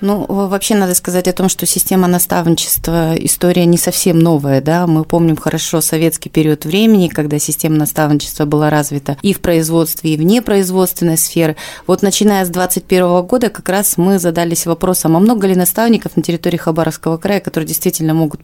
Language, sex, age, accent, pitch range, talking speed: Russian, female, 30-49, native, 160-190 Hz, 170 wpm